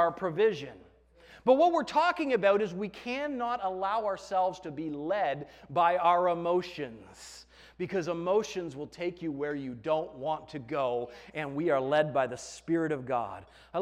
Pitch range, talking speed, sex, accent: 155-230 Hz, 170 wpm, male, American